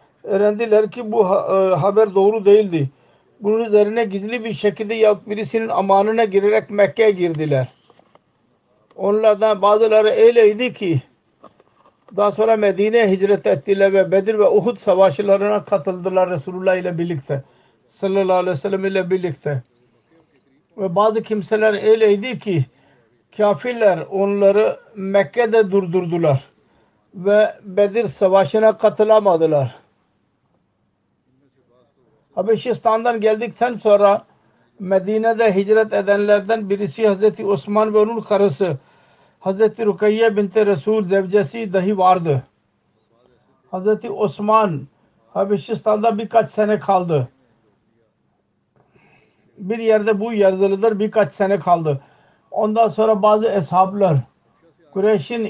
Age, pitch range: 60-79, 185-215 Hz